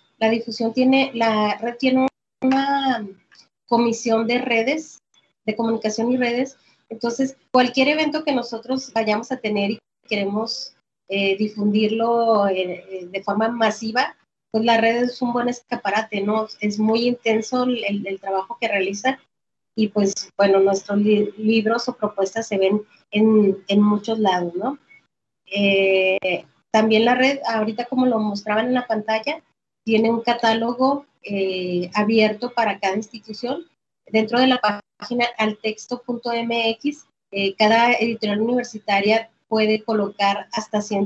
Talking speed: 135 wpm